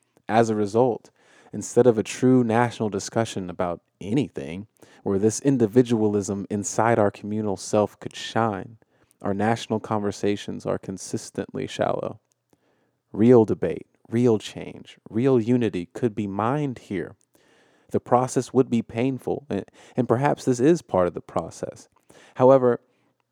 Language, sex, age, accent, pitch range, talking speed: English, male, 30-49, American, 100-120 Hz, 130 wpm